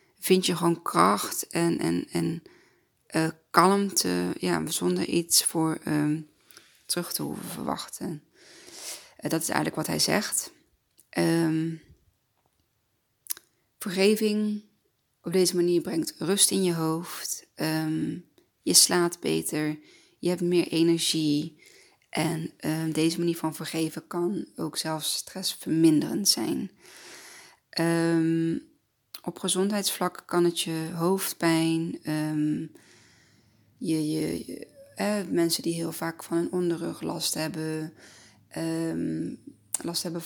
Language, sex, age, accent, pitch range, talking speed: Dutch, female, 20-39, Dutch, 155-175 Hz, 120 wpm